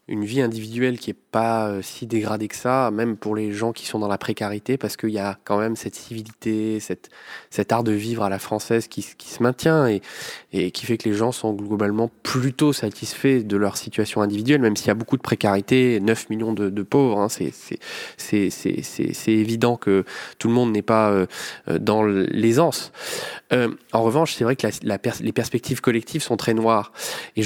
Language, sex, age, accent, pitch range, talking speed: French, male, 20-39, French, 110-130 Hz, 220 wpm